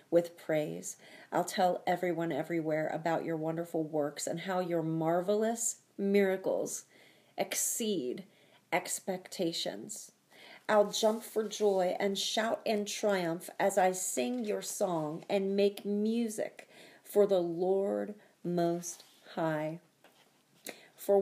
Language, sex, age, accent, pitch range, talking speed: English, female, 40-59, American, 175-235 Hz, 110 wpm